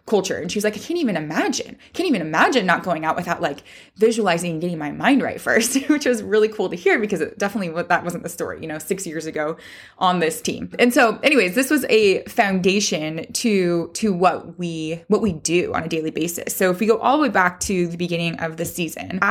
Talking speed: 240 wpm